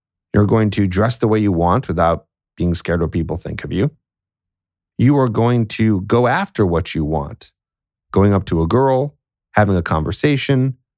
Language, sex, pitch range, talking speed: English, male, 90-120 Hz, 185 wpm